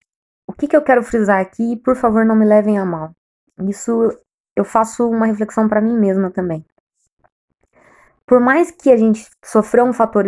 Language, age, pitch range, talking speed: Portuguese, 20-39, 200-235 Hz, 180 wpm